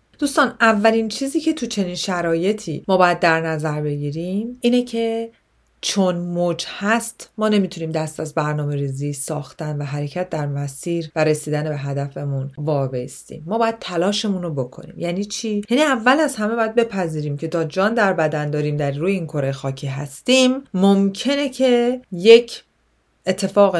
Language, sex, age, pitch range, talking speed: Persian, female, 30-49, 150-215 Hz, 155 wpm